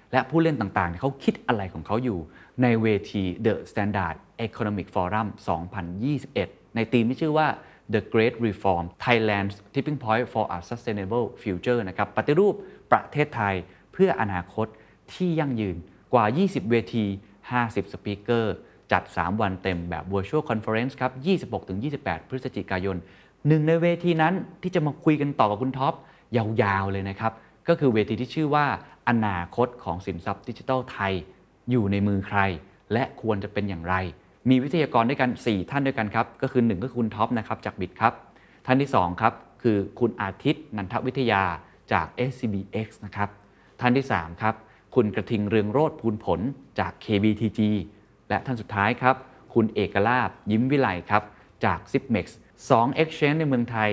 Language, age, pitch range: Thai, 20-39, 100-130 Hz